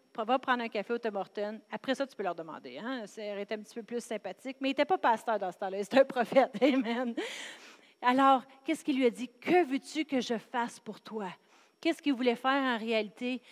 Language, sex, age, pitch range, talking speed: French, female, 40-59, 240-340 Hz, 240 wpm